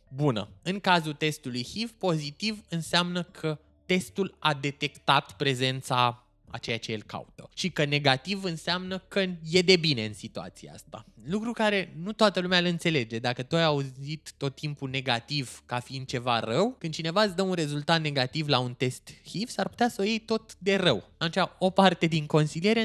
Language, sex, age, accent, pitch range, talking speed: Romanian, male, 20-39, native, 130-185 Hz, 185 wpm